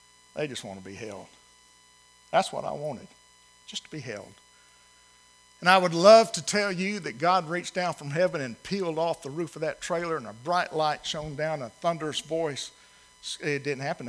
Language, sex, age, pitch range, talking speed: English, male, 50-69, 145-170 Hz, 200 wpm